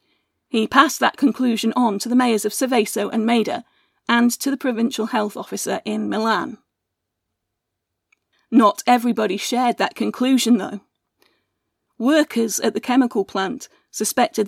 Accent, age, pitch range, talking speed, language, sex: British, 40-59, 220-270 Hz, 135 wpm, English, female